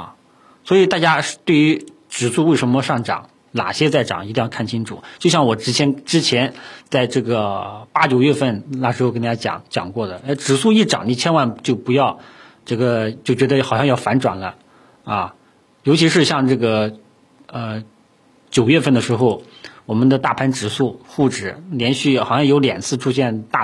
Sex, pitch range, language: male, 115-150 Hz, Chinese